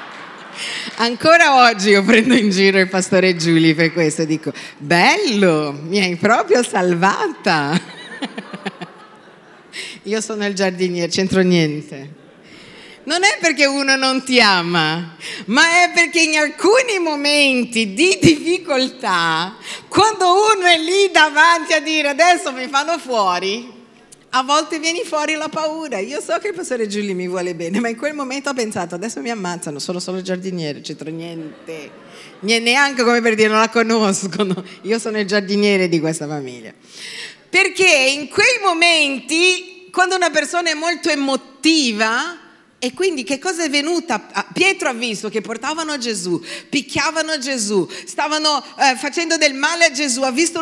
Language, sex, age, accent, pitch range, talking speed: Italian, female, 50-69, native, 195-310 Hz, 150 wpm